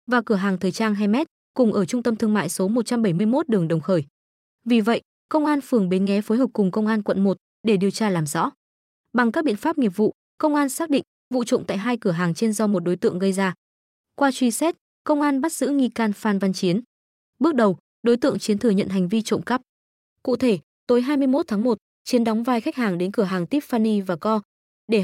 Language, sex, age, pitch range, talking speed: Vietnamese, female, 20-39, 195-250 Hz, 240 wpm